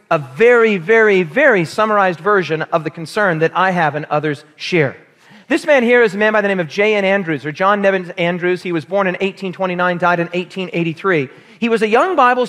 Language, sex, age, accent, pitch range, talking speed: English, male, 40-59, American, 180-230 Hz, 210 wpm